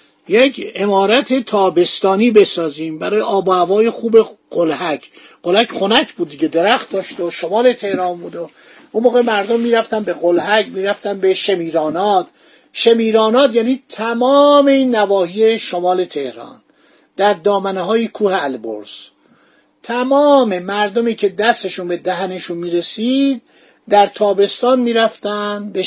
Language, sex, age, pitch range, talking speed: Persian, male, 50-69, 190-235 Hz, 115 wpm